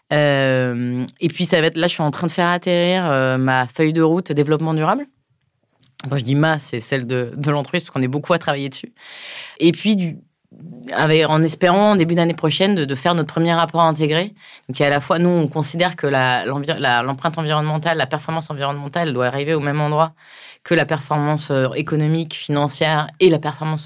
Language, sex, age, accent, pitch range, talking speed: French, female, 20-39, French, 140-170 Hz, 205 wpm